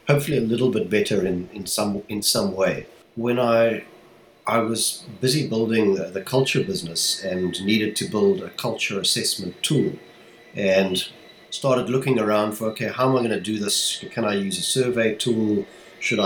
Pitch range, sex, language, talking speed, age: 100-120 Hz, male, English, 180 wpm, 50-69